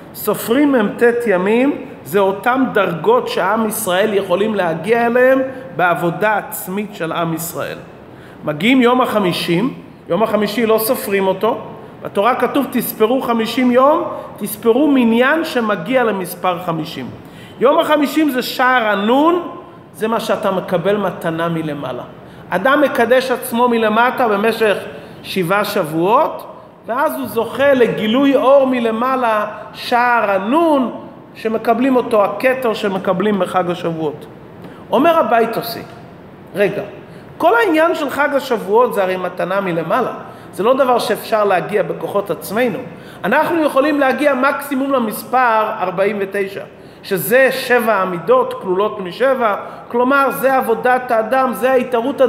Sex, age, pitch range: male, 40-59, 195-255 Hz